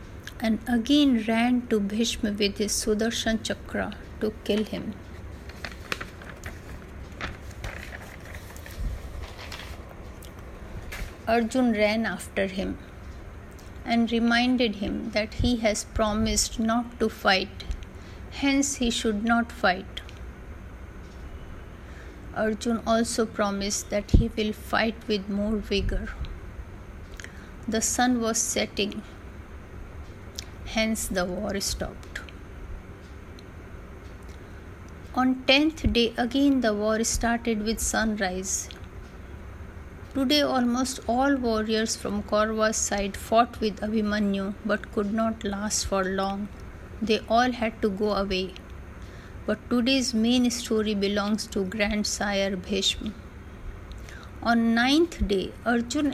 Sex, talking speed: female, 100 wpm